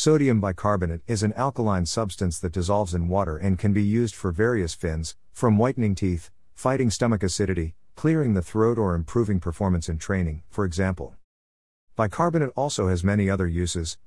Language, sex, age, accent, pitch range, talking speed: English, male, 50-69, American, 85-115 Hz, 165 wpm